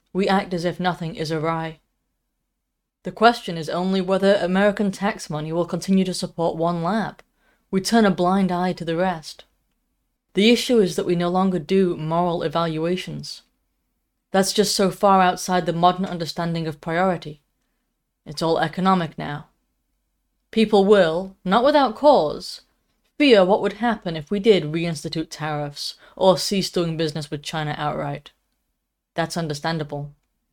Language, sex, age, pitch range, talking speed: English, female, 20-39, 165-195 Hz, 150 wpm